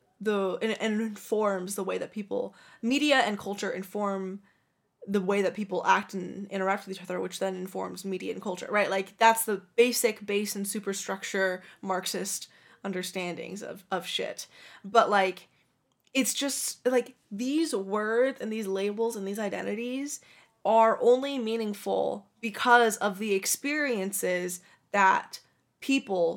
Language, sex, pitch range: English, female, 190-225 Hz